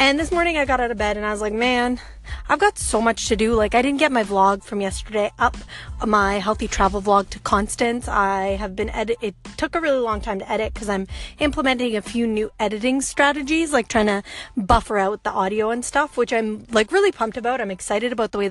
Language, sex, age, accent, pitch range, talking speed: English, female, 20-39, American, 210-280 Hz, 240 wpm